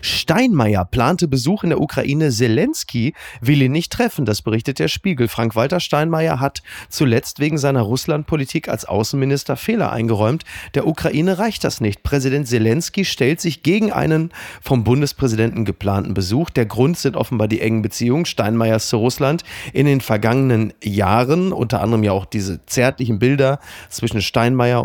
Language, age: German, 30-49